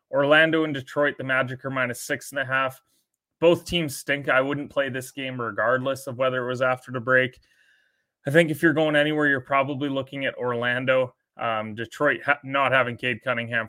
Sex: male